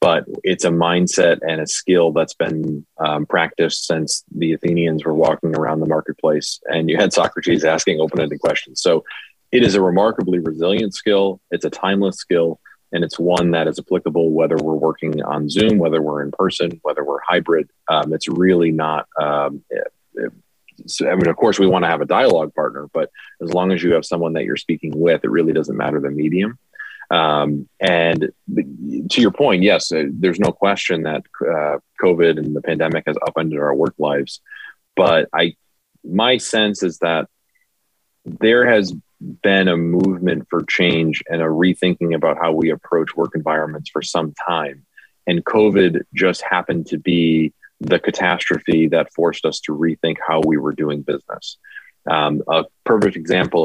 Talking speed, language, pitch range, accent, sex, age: 170 wpm, English, 80-90 Hz, American, male, 30-49